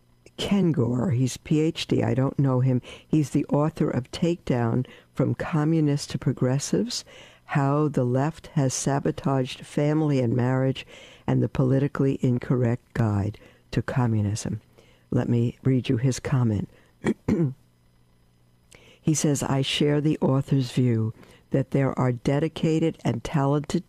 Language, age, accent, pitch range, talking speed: English, 60-79, American, 120-155 Hz, 130 wpm